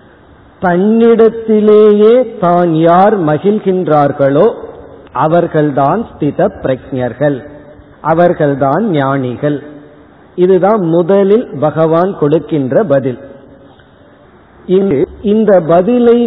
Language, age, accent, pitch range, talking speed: Tamil, 50-69, native, 150-205 Hz, 65 wpm